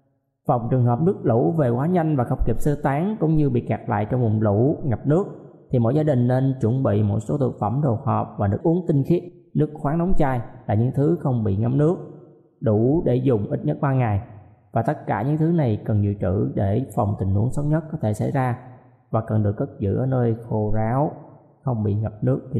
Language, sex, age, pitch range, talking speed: Vietnamese, male, 20-39, 110-140 Hz, 245 wpm